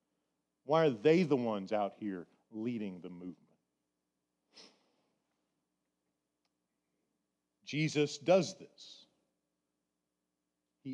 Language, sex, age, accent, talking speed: English, male, 40-59, American, 75 wpm